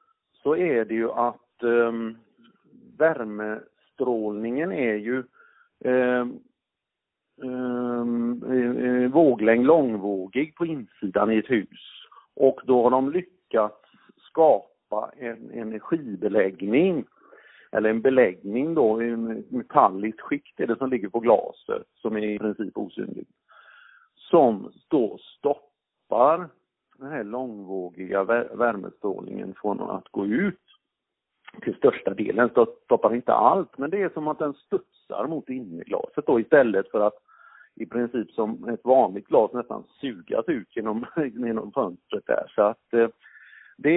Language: Swedish